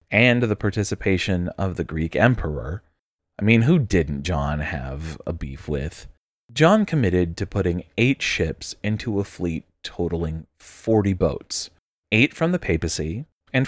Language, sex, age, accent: English, male, 30-49, American